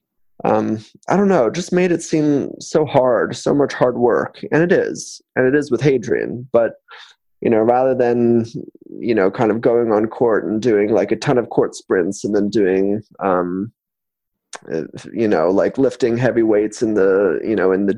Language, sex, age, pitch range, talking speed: English, male, 20-39, 105-125 Hz, 195 wpm